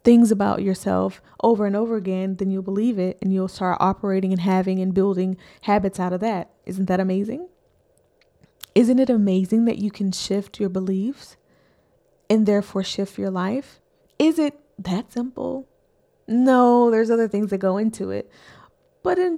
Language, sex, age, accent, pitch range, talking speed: English, female, 20-39, American, 195-230 Hz, 165 wpm